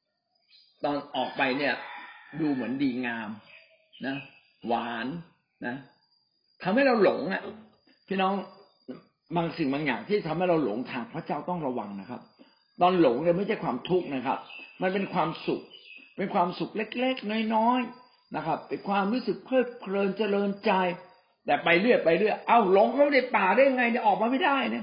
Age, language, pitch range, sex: 60-79, Thai, 160-255 Hz, male